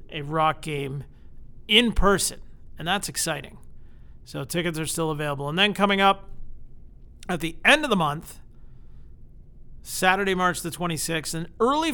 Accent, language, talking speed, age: American, English, 145 wpm, 40-59